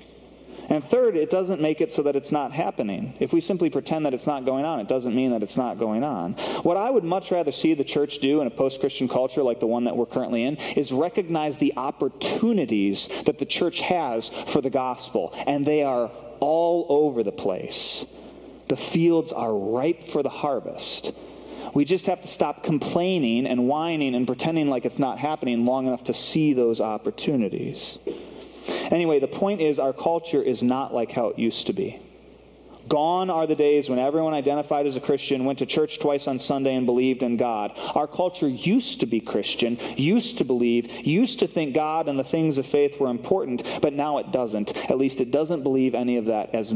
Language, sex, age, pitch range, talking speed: English, male, 30-49, 125-155 Hz, 205 wpm